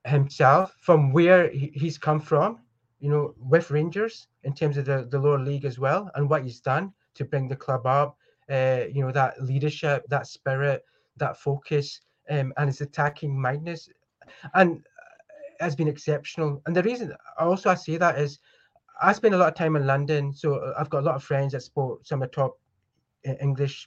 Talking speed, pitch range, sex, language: 190 wpm, 135-155 Hz, male, English